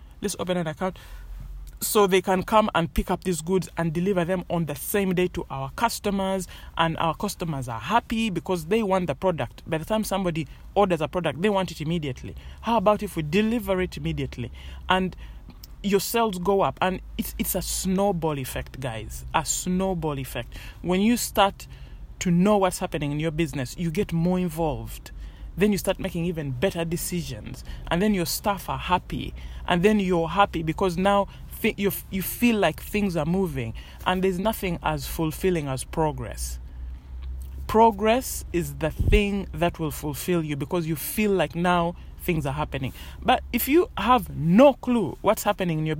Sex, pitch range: male, 155-195 Hz